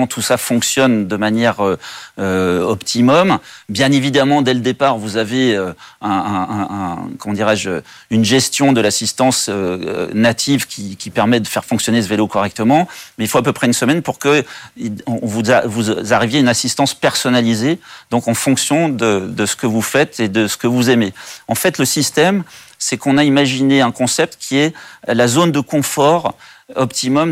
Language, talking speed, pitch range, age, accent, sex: French, 190 wpm, 110-135 Hz, 40-59, French, male